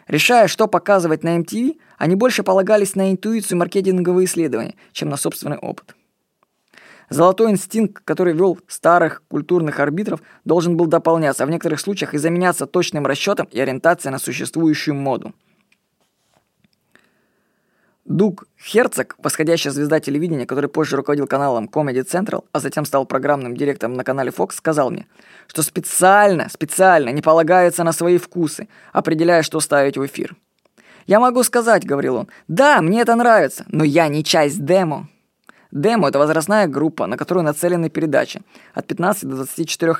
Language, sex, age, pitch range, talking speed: Russian, female, 20-39, 150-195 Hz, 145 wpm